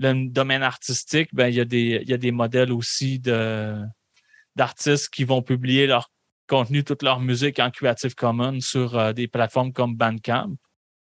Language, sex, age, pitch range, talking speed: French, male, 20-39, 120-140 Hz, 175 wpm